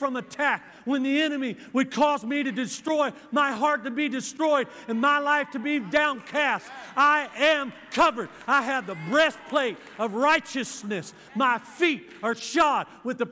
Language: English